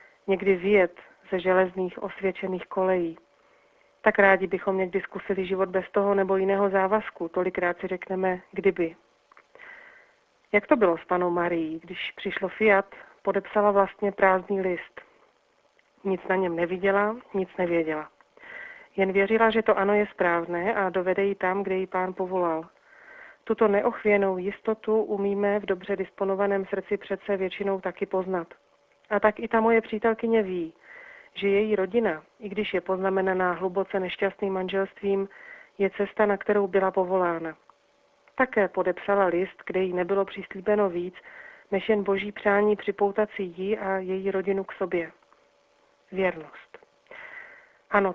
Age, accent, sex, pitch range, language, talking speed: 40-59, native, female, 185-210 Hz, Czech, 140 wpm